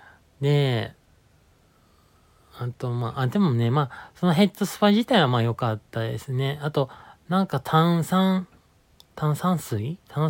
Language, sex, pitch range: Japanese, male, 110-145 Hz